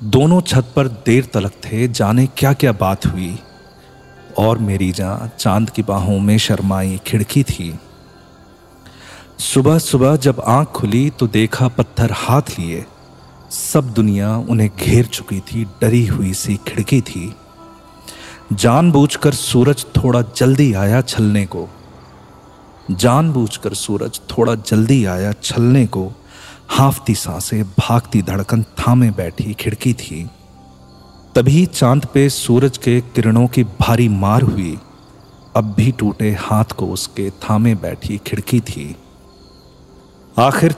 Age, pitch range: 40-59, 100-125 Hz